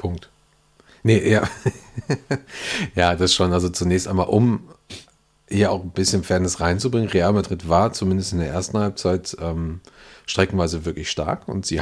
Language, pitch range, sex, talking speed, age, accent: German, 90-110 Hz, male, 150 wpm, 40-59, German